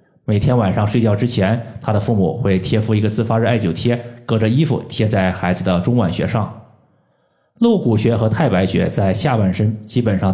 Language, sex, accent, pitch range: Chinese, male, native, 105-130 Hz